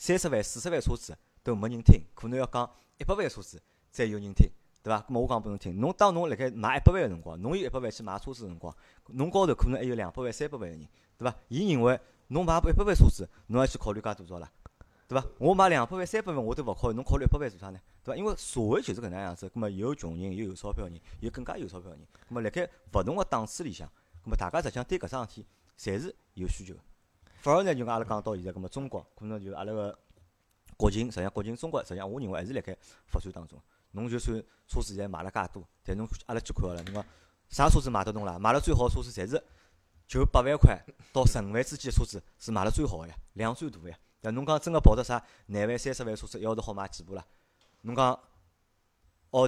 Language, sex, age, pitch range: Chinese, male, 30-49, 95-125 Hz